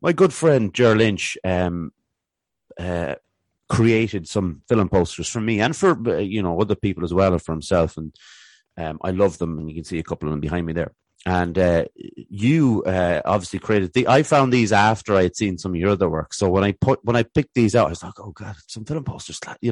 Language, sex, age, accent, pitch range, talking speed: English, male, 30-49, Irish, 95-120 Hz, 235 wpm